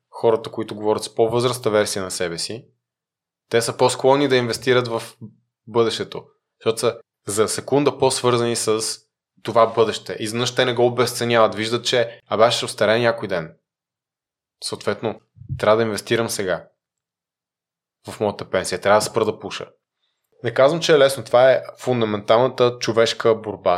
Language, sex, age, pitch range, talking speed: Bulgarian, male, 20-39, 110-125 Hz, 145 wpm